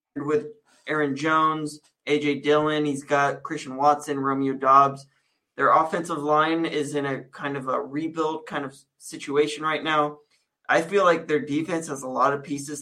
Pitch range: 140-155 Hz